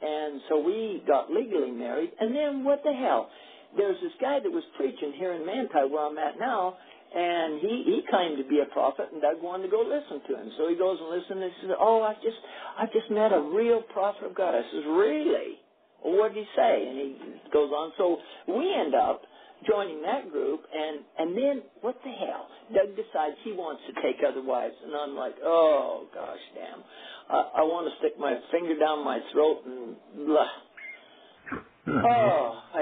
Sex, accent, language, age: male, American, English, 60-79